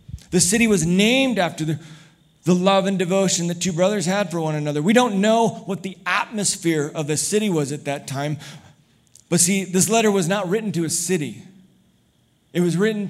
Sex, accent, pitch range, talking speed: male, American, 160-205 Hz, 195 wpm